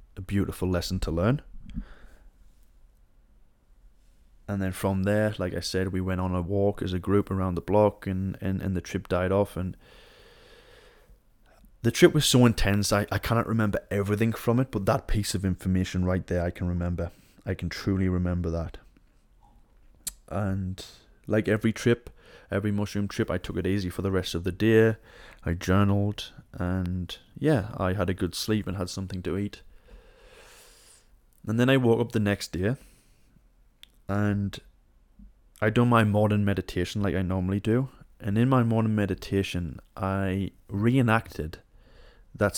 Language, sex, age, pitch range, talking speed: English, male, 20-39, 90-105 Hz, 160 wpm